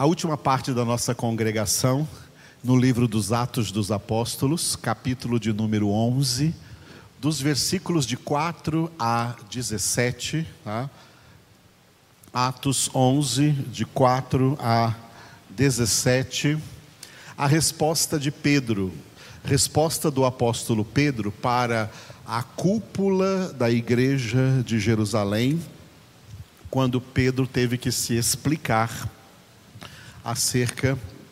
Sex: male